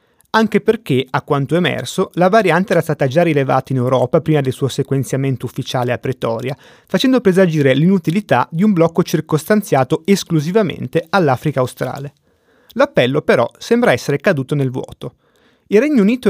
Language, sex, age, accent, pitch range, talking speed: Italian, male, 30-49, native, 140-190 Hz, 145 wpm